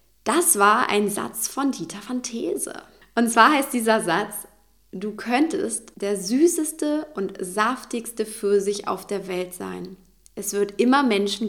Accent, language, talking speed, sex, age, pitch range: German, German, 145 wpm, female, 20-39, 195-270 Hz